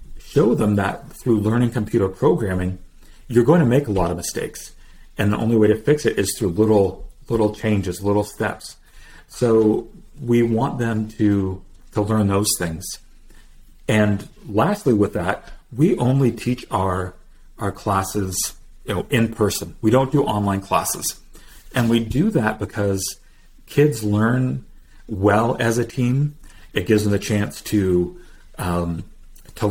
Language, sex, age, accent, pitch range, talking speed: English, male, 40-59, American, 95-120 Hz, 155 wpm